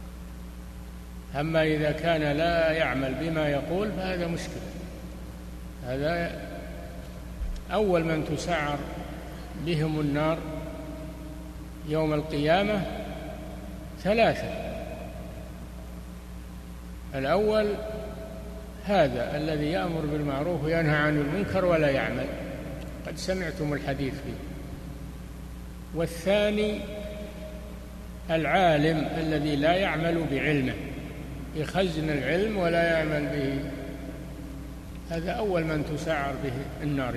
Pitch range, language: 120-170 Hz, Arabic